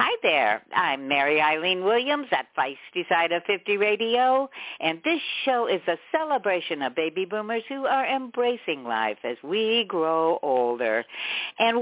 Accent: American